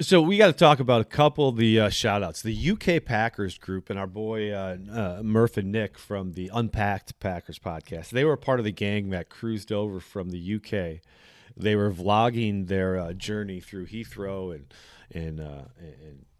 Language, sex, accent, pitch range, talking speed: English, male, American, 90-120 Hz, 205 wpm